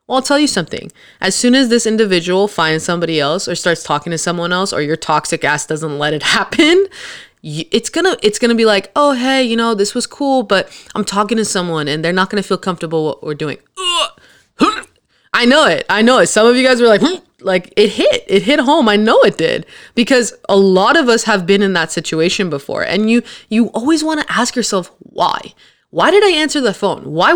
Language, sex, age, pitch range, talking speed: English, female, 20-39, 190-270 Hz, 225 wpm